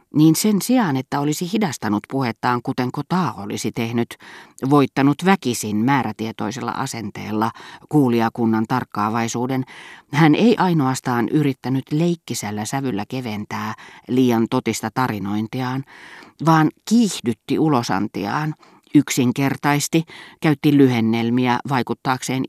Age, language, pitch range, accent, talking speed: 30-49, Finnish, 115-150 Hz, native, 90 wpm